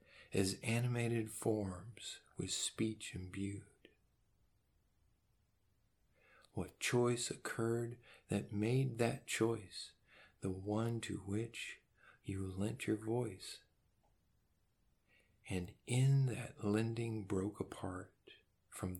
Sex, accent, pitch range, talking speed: male, American, 95-115 Hz, 90 wpm